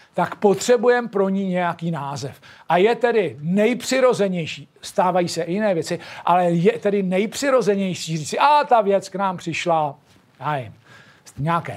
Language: Czech